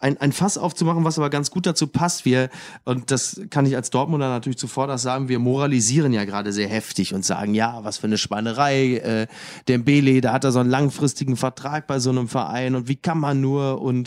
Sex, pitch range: male, 125-160 Hz